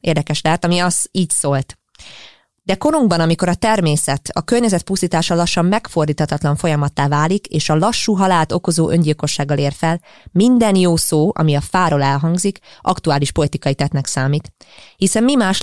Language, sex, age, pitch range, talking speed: English, female, 20-39, 150-185 Hz, 155 wpm